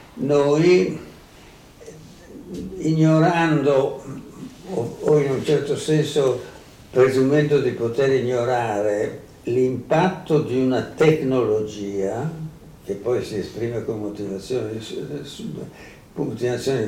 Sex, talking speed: male, 80 wpm